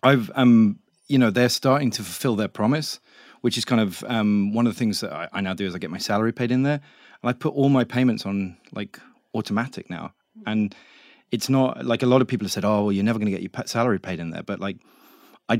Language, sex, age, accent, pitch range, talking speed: English, male, 30-49, British, 100-125 Hz, 260 wpm